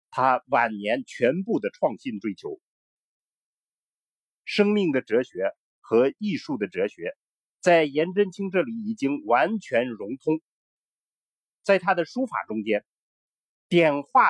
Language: Chinese